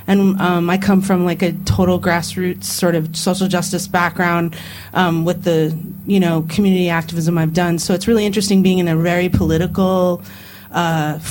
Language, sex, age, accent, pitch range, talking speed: English, female, 30-49, American, 170-200 Hz, 175 wpm